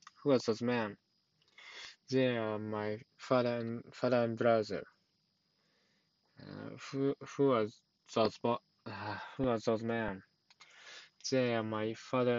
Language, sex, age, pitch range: Japanese, male, 20-39, 110-125 Hz